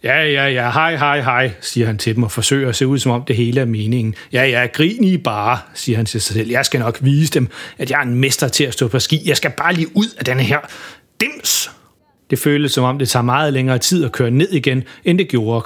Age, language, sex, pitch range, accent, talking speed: 30-49, Danish, male, 125-155 Hz, native, 275 wpm